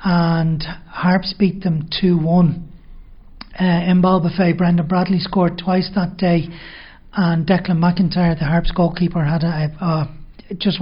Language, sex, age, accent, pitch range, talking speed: English, male, 40-59, Irish, 165-180 Hz, 140 wpm